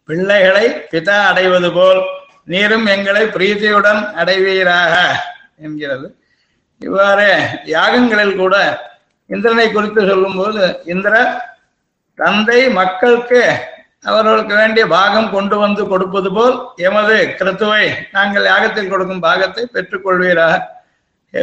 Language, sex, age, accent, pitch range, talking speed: Tamil, male, 50-69, native, 180-220 Hz, 95 wpm